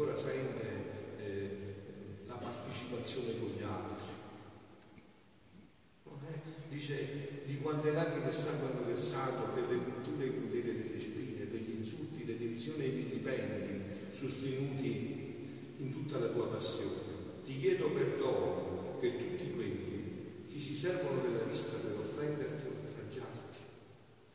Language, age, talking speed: Italian, 50-69, 125 wpm